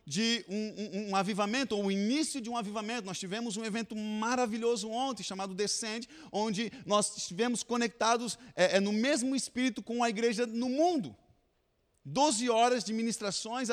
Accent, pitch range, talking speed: Brazilian, 200-255 Hz, 160 wpm